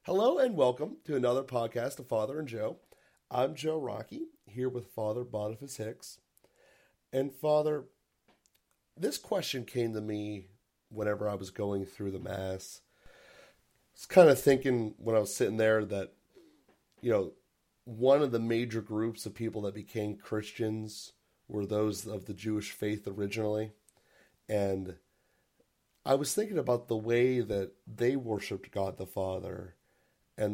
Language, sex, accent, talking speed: English, male, American, 150 wpm